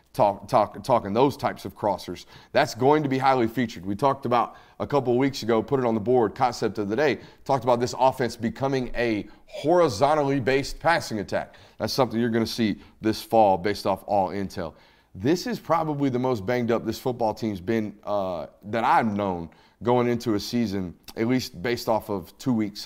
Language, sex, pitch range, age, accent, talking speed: English, male, 105-135 Hz, 30-49, American, 205 wpm